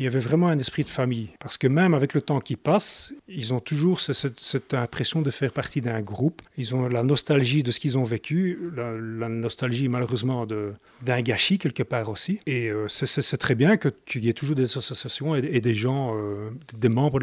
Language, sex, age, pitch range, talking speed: French, male, 30-49, 115-150 Hz, 235 wpm